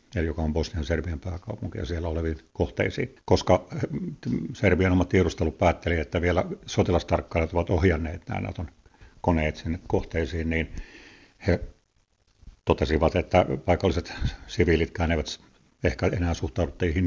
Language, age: Finnish, 50-69